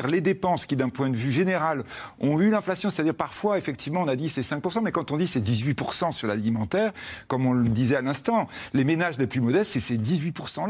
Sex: male